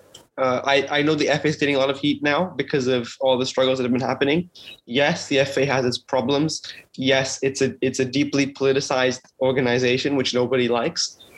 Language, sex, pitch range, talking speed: English, male, 125-145 Hz, 205 wpm